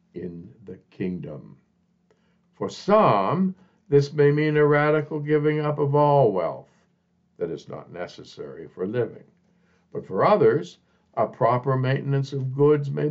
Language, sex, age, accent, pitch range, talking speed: English, male, 60-79, American, 115-165 Hz, 135 wpm